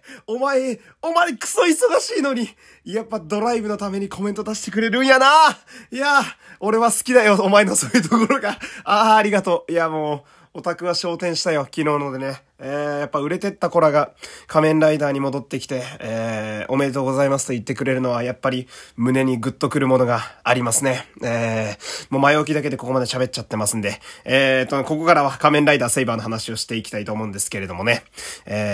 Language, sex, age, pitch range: Japanese, male, 20-39, 115-195 Hz